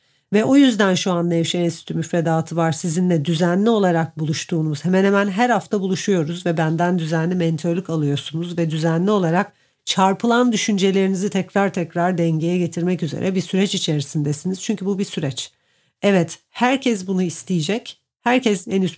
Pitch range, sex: 165-195 Hz, female